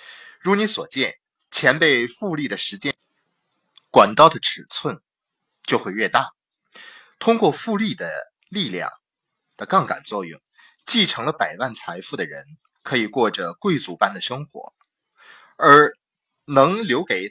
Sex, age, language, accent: male, 30-49, Chinese, native